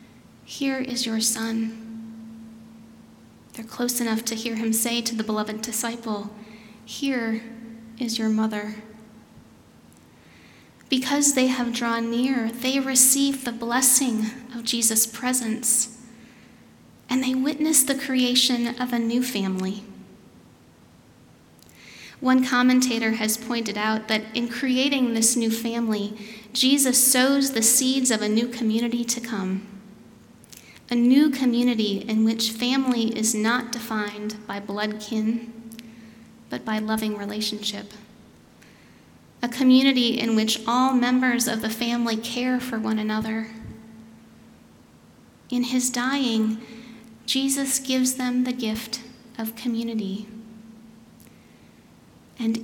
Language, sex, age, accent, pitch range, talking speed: English, female, 30-49, American, 225-250 Hz, 115 wpm